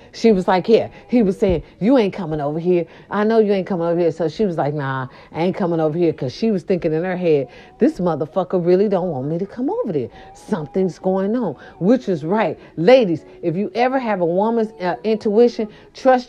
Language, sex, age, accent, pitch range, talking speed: English, female, 40-59, American, 155-220 Hz, 230 wpm